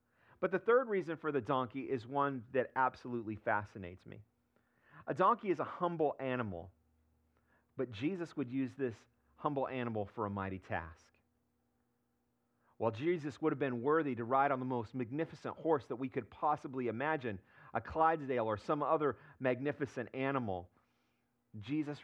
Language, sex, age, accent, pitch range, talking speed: English, male, 40-59, American, 80-135 Hz, 150 wpm